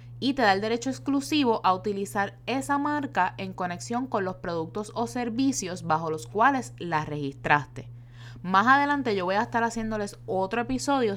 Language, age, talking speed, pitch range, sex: Spanish, 10-29, 165 wpm, 155-225 Hz, female